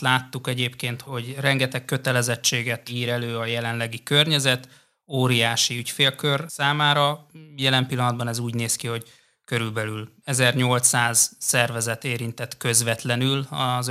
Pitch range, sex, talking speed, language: 115-140 Hz, male, 110 wpm, Hungarian